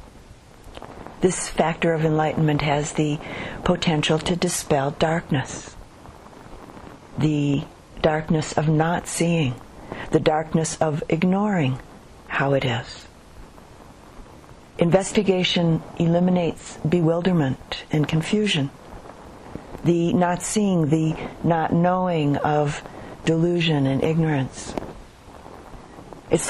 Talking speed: 85 wpm